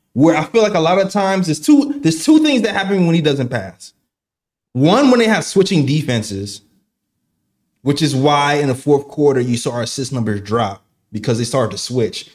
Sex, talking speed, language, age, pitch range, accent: male, 210 wpm, English, 20-39, 120-180 Hz, American